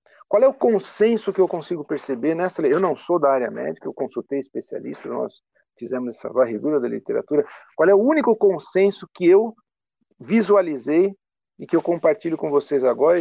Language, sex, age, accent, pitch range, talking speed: Portuguese, male, 50-69, Brazilian, 150-215 Hz, 180 wpm